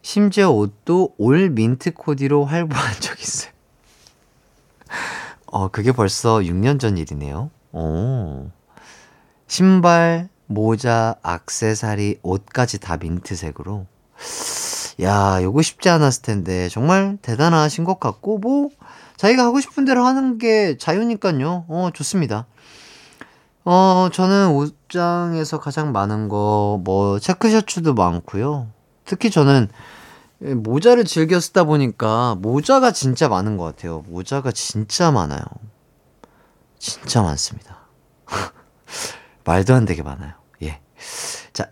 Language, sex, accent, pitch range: Korean, male, native, 105-175 Hz